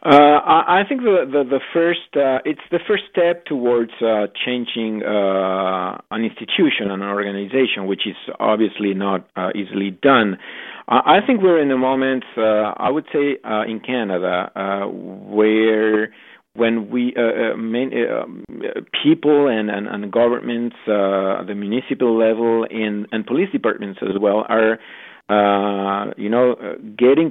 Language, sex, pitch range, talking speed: English, male, 105-130 Hz, 155 wpm